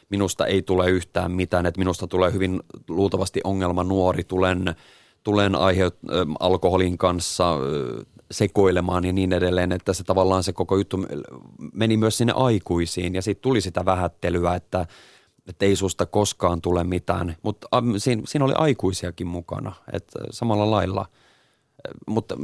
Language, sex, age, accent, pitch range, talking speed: Finnish, male, 30-49, native, 90-100 Hz, 145 wpm